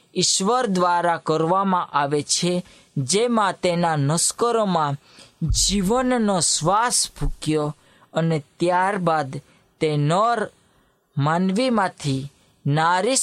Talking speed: 45 wpm